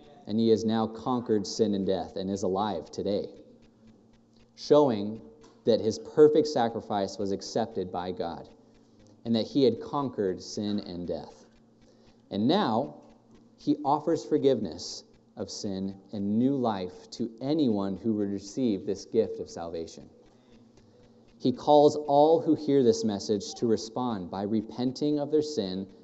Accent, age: American, 30-49